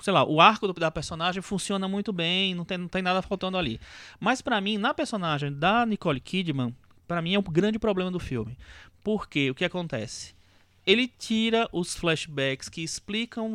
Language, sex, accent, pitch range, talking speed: Portuguese, male, Brazilian, 125-190 Hz, 190 wpm